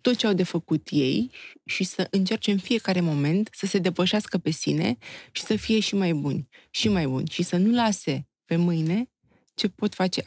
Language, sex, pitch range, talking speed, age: Romanian, female, 170-215 Hz, 205 wpm, 20-39